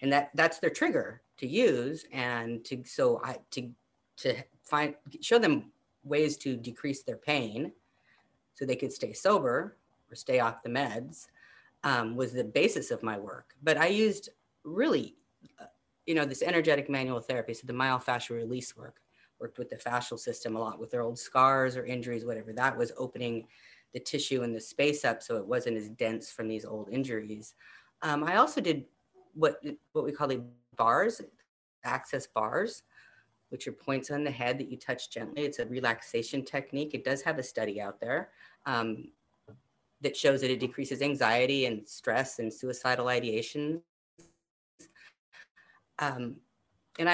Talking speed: 170 wpm